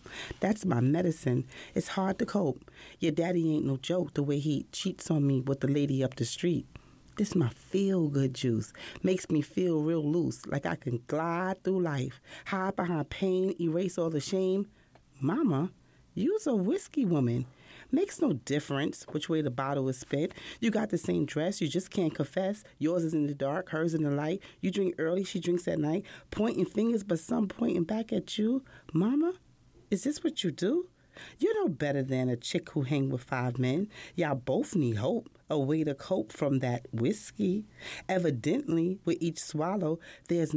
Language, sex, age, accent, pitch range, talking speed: English, female, 30-49, American, 140-185 Hz, 185 wpm